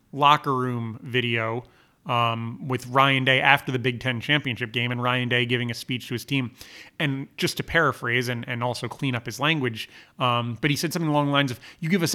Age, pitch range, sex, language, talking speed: 30-49, 130-160 Hz, male, English, 220 wpm